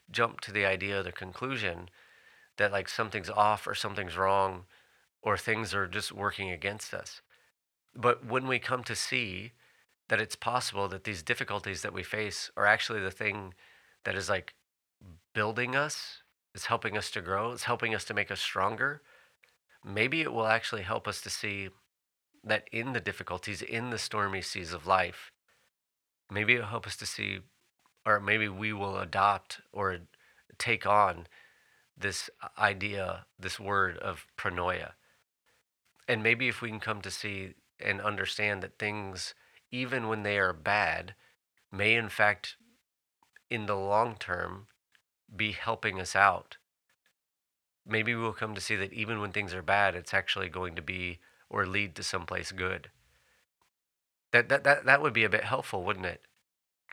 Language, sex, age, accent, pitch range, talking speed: English, male, 30-49, American, 95-115 Hz, 160 wpm